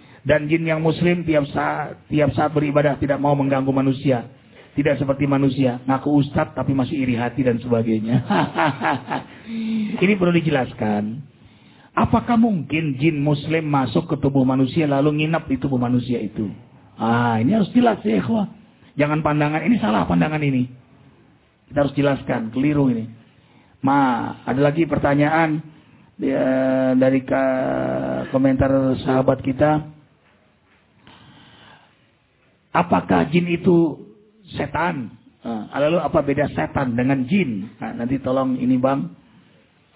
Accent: Indonesian